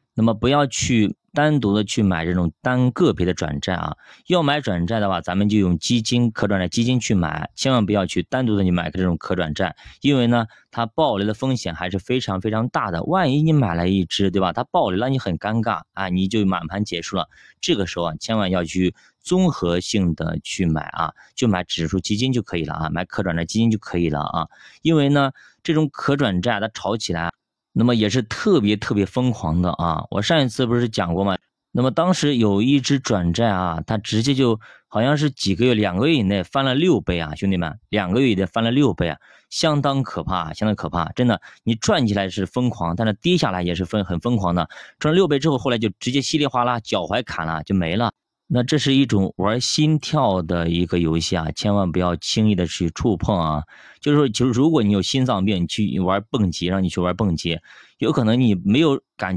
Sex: male